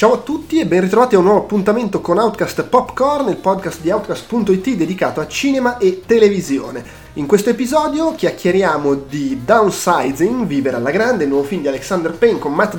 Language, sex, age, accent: Italian, male, 30-49, native